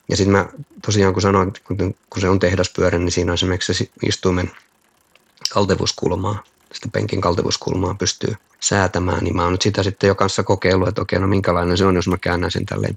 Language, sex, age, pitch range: Finnish, male, 20-39, 90-105 Hz